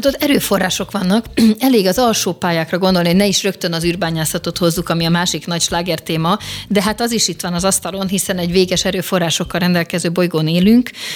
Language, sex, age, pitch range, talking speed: Hungarian, female, 30-49, 165-200 Hz, 190 wpm